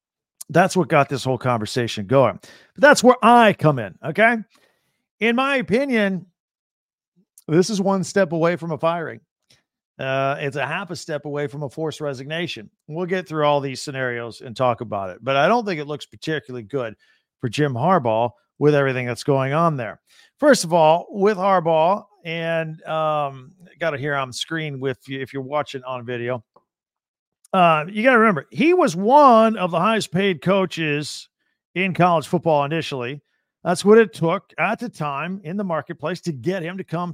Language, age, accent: English, 50-69, American